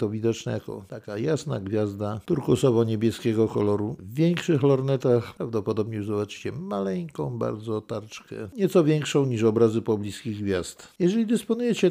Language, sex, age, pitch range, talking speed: Polish, male, 50-69, 110-155 Hz, 125 wpm